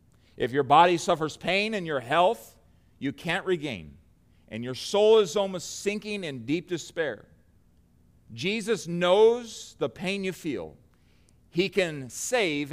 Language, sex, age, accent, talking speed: English, male, 40-59, American, 135 wpm